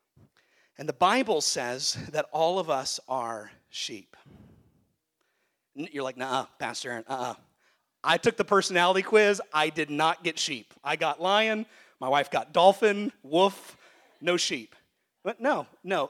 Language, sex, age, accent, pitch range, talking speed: English, male, 40-59, American, 160-215 Hz, 145 wpm